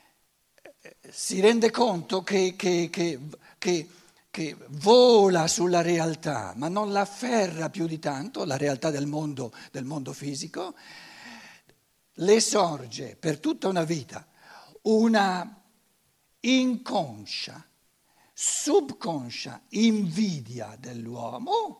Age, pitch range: 60-79, 150-220 Hz